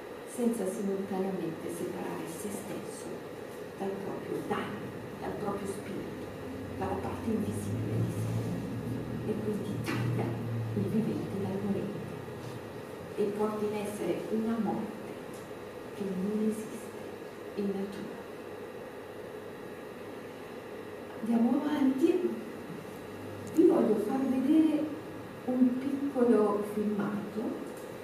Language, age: Italian, 40-59